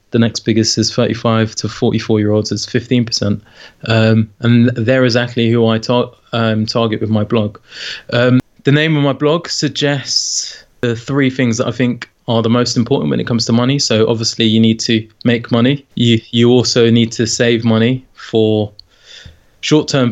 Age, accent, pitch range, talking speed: 20-39, British, 110-125 Hz, 180 wpm